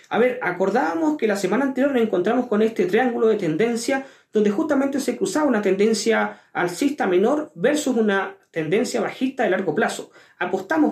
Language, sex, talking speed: Spanish, male, 165 wpm